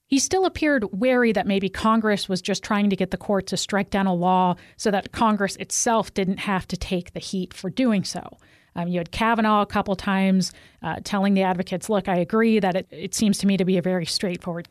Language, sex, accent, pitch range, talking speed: English, female, American, 185-210 Hz, 235 wpm